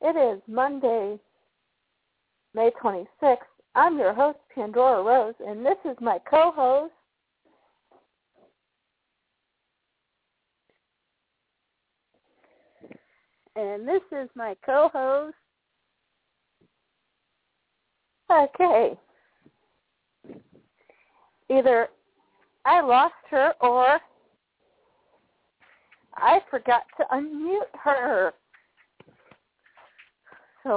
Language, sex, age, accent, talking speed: English, female, 50-69, American, 60 wpm